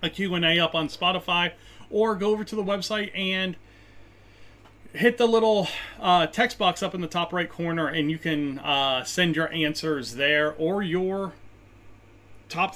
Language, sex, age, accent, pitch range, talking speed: English, male, 30-49, American, 130-180 Hz, 165 wpm